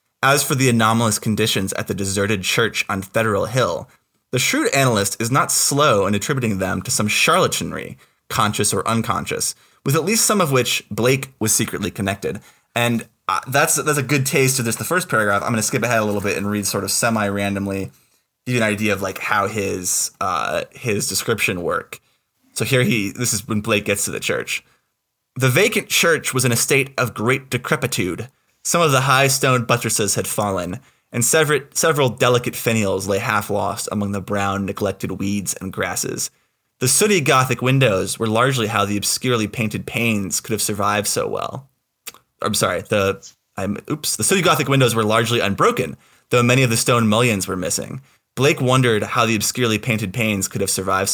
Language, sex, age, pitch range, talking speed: English, male, 20-39, 100-130 Hz, 190 wpm